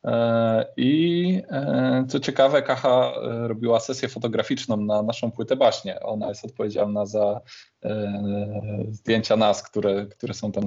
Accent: native